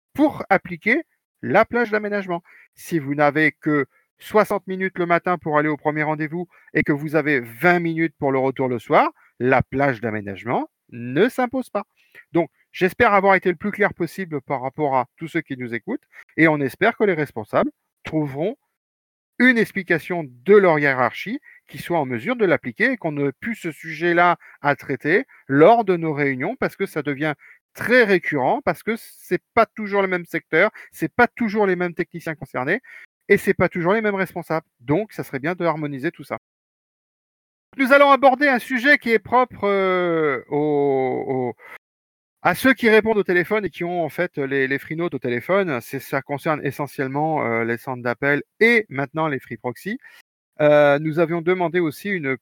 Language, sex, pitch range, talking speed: French, male, 140-200 Hz, 185 wpm